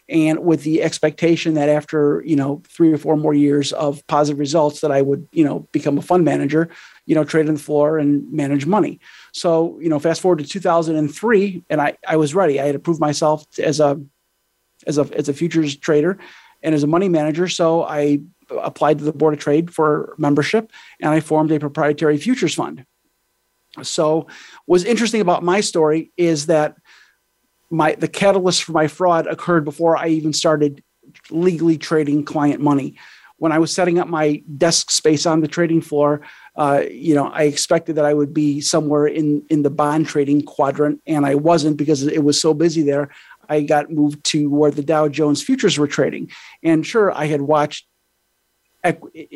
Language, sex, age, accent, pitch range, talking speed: English, male, 40-59, American, 150-165 Hz, 190 wpm